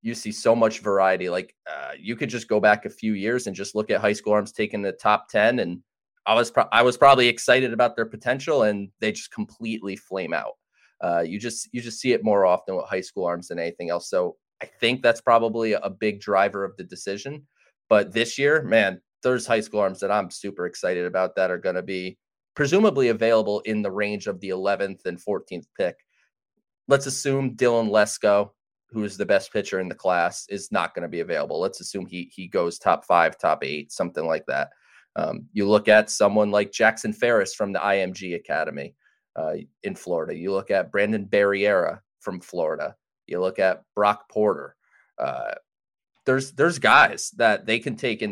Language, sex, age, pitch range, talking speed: English, male, 30-49, 100-115 Hz, 205 wpm